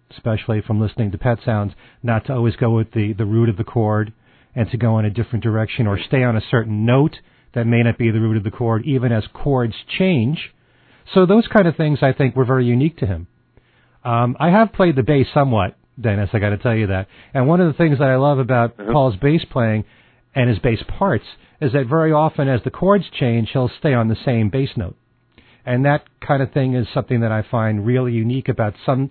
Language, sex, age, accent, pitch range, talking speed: English, male, 40-59, American, 115-135 Hz, 235 wpm